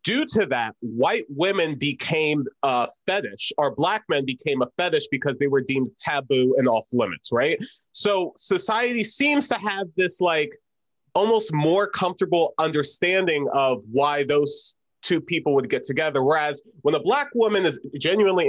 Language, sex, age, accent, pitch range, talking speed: English, male, 30-49, American, 135-180 Hz, 160 wpm